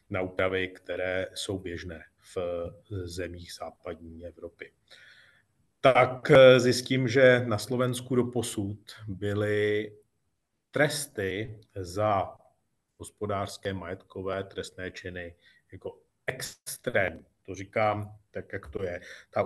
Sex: male